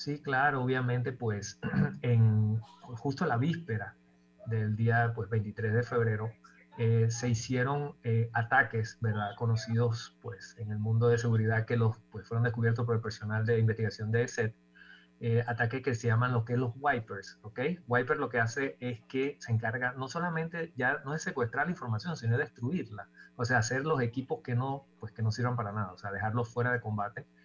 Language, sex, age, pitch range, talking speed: Spanish, male, 30-49, 110-125 Hz, 190 wpm